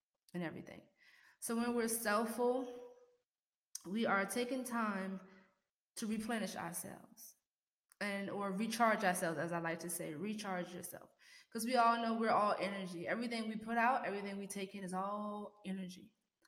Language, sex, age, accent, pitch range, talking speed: English, female, 20-39, American, 190-230 Hz, 155 wpm